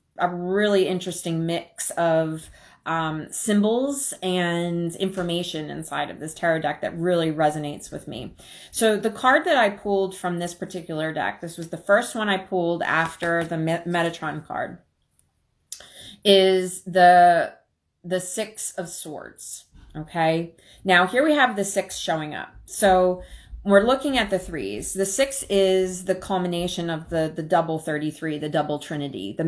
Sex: female